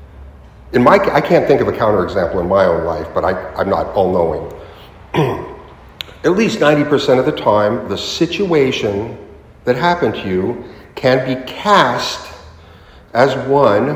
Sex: male